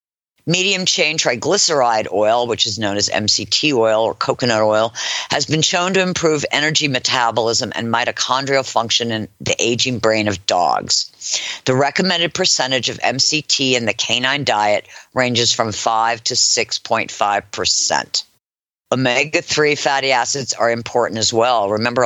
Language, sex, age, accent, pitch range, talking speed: English, female, 50-69, American, 110-155 Hz, 135 wpm